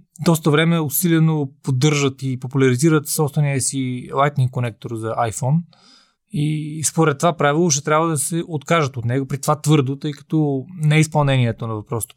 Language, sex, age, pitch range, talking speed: Bulgarian, male, 20-39, 130-160 Hz, 155 wpm